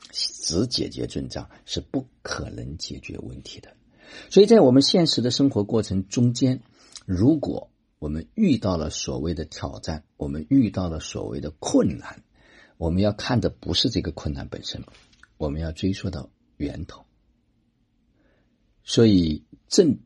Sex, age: male, 50-69